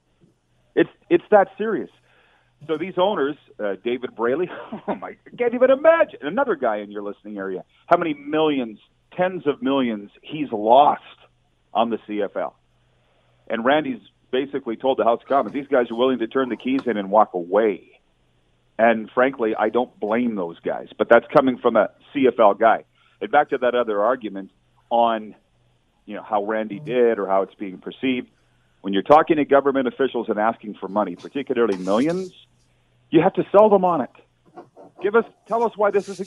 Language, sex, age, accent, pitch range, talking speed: English, male, 40-59, American, 110-150 Hz, 185 wpm